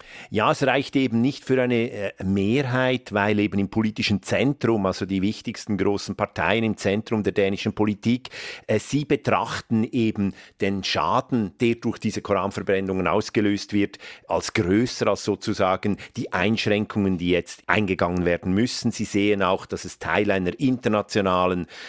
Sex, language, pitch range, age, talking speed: male, German, 100-115 Hz, 50-69, 150 wpm